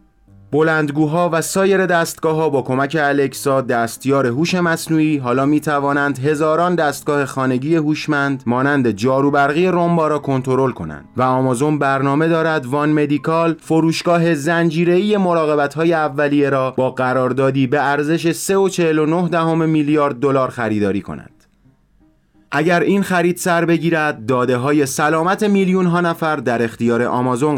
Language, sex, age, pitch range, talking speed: Persian, male, 30-49, 135-165 Hz, 130 wpm